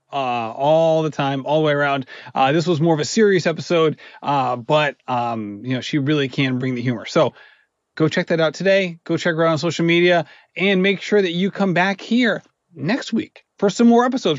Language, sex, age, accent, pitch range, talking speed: English, male, 30-49, American, 150-195 Hz, 225 wpm